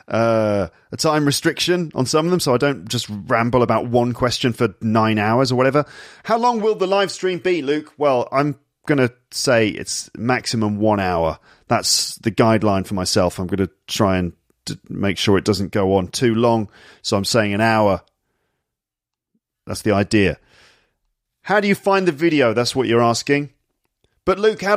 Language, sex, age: English, male, 40-59